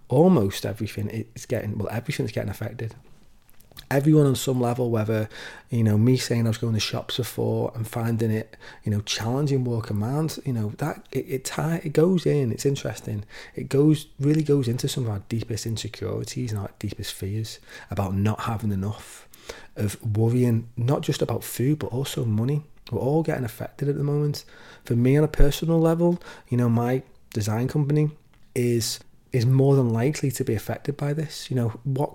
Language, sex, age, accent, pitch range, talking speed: English, male, 30-49, British, 110-140 Hz, 185 wpm